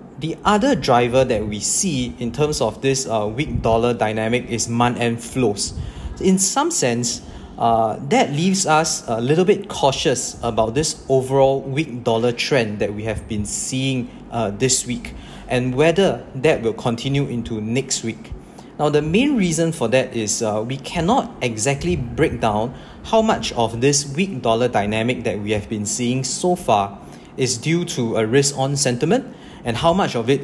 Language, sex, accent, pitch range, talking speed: English, male, Malaysian, 115-150 Hz, 175 wpm